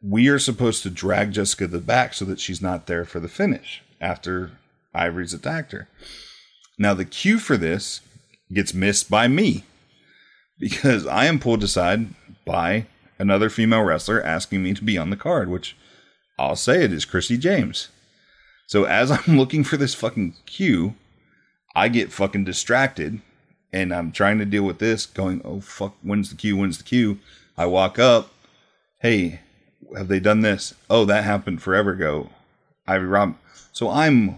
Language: English